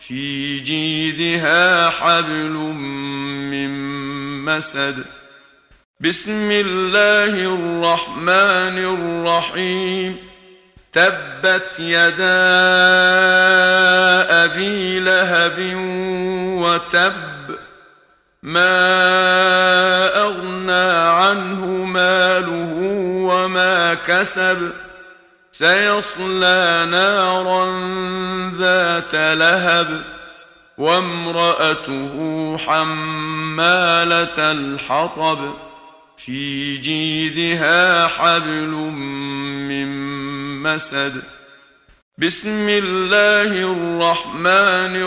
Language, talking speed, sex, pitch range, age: Arabic, 45 wpm, male, 155-185 Hz, 50-69